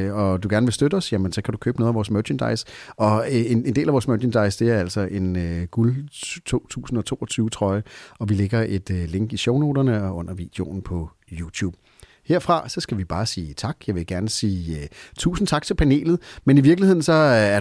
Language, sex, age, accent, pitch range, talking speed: Danish, male, 40-59, native, 100-130 Hz, 210 wpm